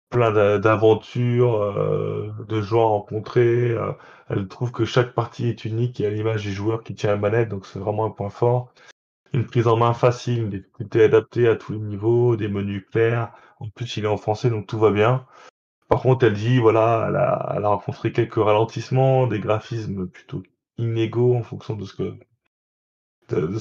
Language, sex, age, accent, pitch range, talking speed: French, male, 20-39, French, 110-130 Hz, 190 wpm